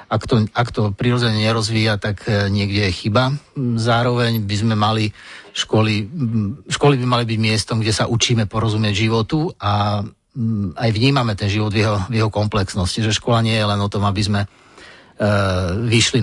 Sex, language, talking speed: male, Slovak, 165 wpm